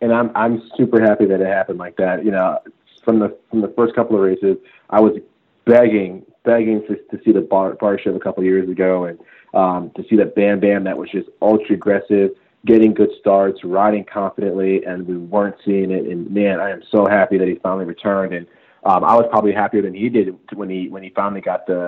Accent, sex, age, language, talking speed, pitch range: American, male, 30-49, English, 230 wpm, 95-110 Hz